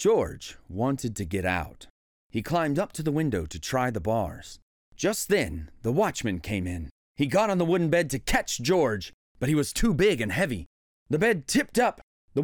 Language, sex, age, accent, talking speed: English, male, 30-49, American, 205 wpm